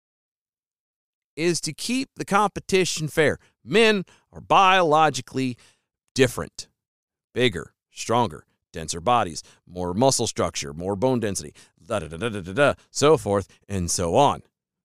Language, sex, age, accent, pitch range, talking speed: English, male, 40-59, American, 115-185 Hz, 125 wpm